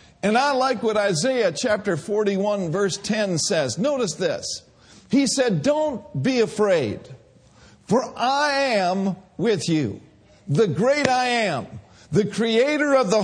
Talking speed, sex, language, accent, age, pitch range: 135 wpm, male, English, American, 50-69, 185-265 Hz